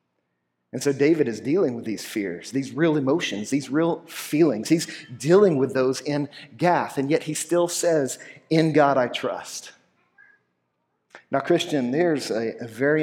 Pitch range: 135-180 Hz